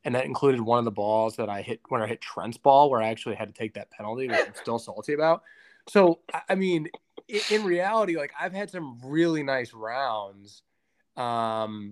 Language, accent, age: English, American, 20-39